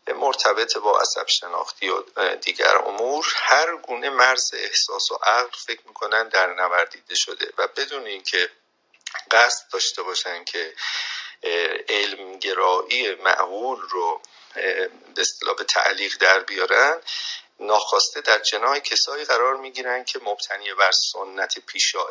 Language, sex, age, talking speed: Persian, male, 50-69, 120 wpm